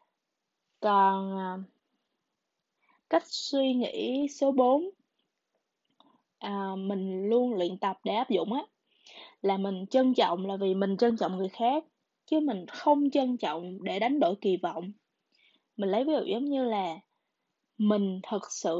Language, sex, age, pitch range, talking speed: Vietnamese, female, 20-39, 190-260 Hz, 145 wpm